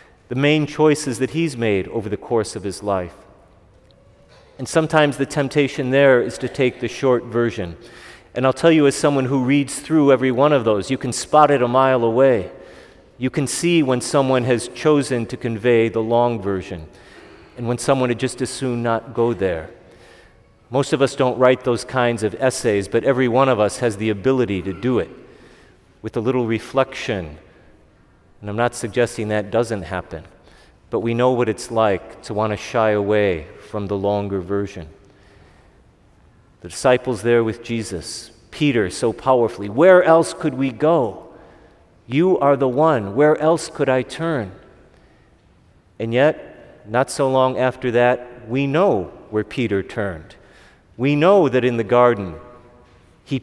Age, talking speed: 40-59, 170 wpm